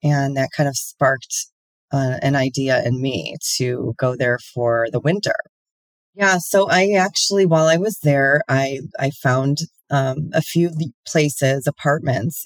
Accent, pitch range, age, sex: American, 130-155 Hz, 30-49, female